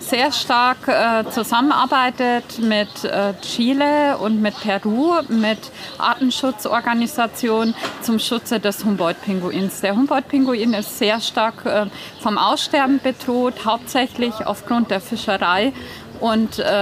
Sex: female